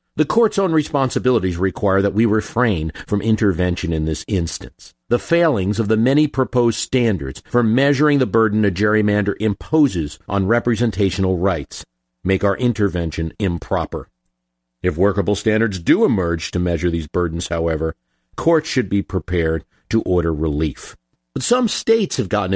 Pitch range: 90-120 Hz